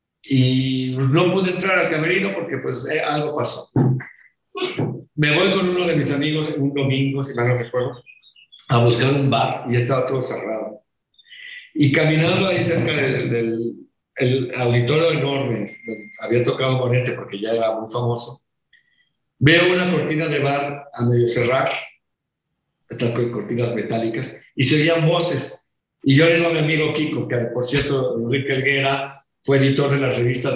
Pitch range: 125-165 Hz